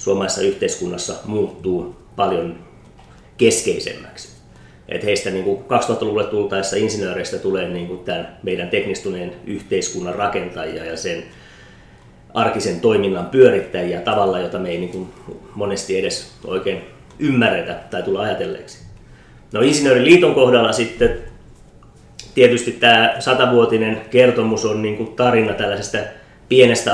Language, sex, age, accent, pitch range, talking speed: Finnish, male, 30-49, native, 100-125 Hz, 105 wpm